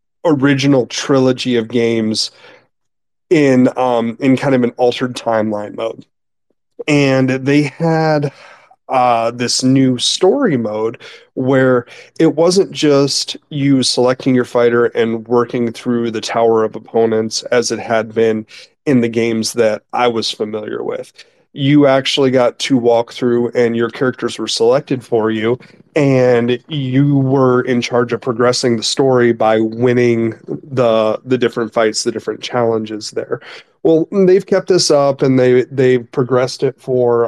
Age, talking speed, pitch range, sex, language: 30-49, 145 wpm, 115-135 Hz, male, English